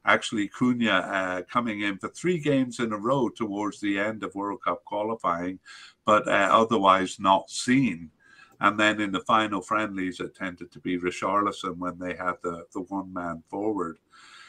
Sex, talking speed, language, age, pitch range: male, 170 wpm, English, 50-69, 90-115 Hz